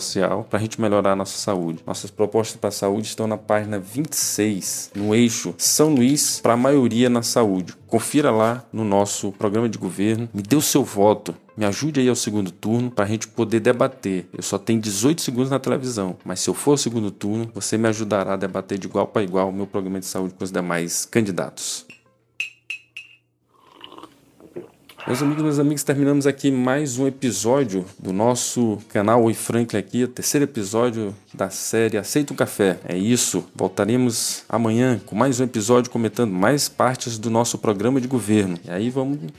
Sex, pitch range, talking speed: male, 100-130 Hz, 185 wpm